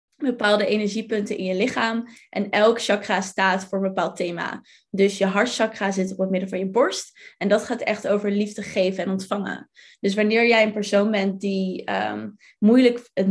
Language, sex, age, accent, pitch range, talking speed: Dutch, female, 20-39, Dutch, 195-240 Hz, 180 wpm